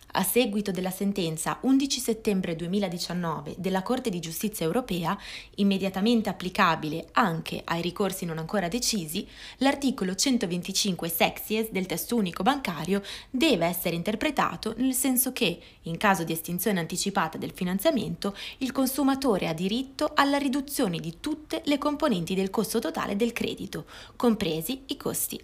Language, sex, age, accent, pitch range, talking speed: Italian, female, 20-39, native, 180-240 Hz, 135 wpm